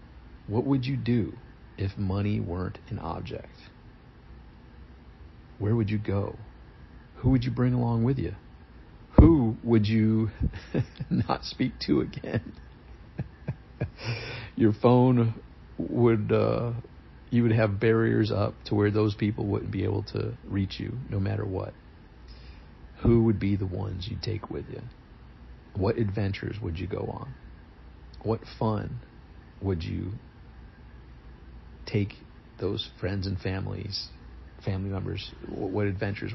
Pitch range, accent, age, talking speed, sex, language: 85-110 Hz, American, 50-69, 130 wpm, male, English